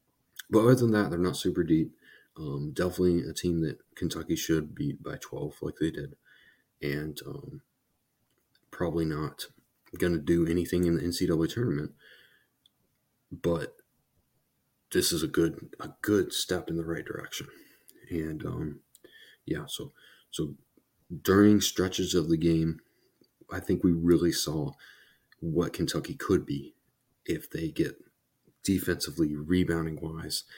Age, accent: 30-49, American